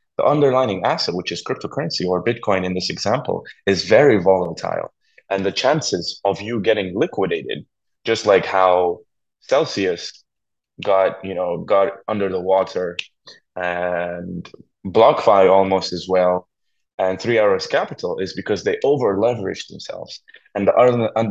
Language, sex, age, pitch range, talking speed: English, male, 20-39, 95-110 Hz, 145 wpm